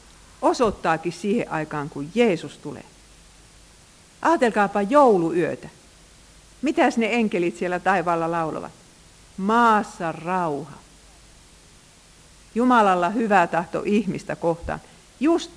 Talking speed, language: 85 wpm, Finnish